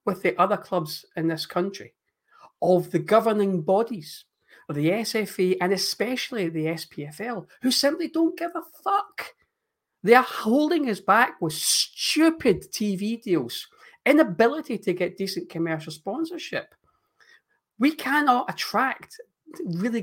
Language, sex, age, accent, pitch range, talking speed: English, male, 40-59, British, 175-250 Hz, 125 wpm